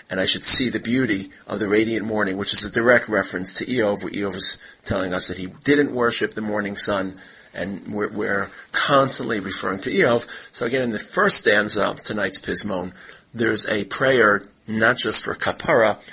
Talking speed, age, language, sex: 195 wpm, 40-59, English, male